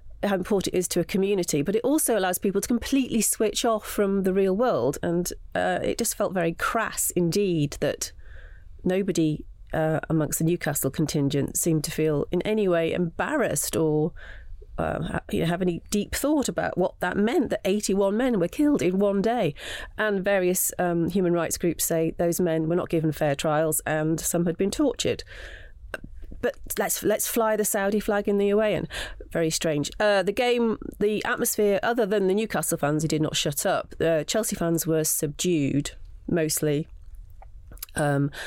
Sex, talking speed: female, 180 wpm